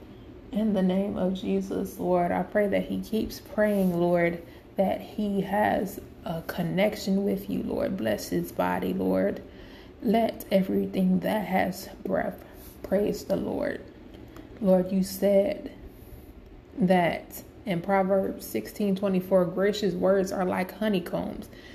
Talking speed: 130 wpm